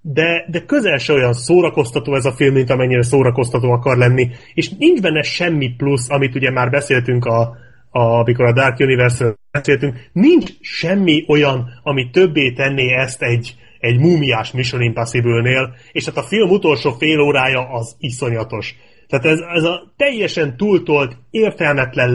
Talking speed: 155 wpm